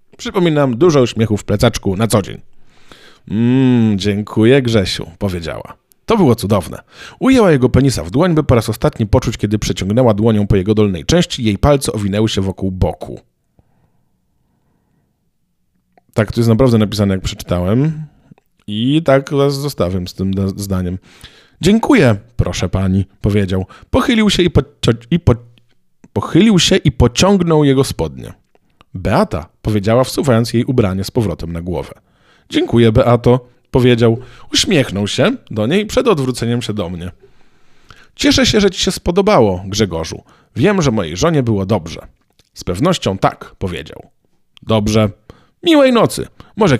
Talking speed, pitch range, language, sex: 145 wpm, 100-140 Hz, Polish, male